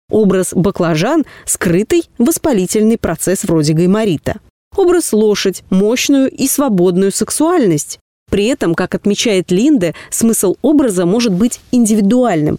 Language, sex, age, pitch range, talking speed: Russian, female, 30-49, 185-245 Hz, 115 wpm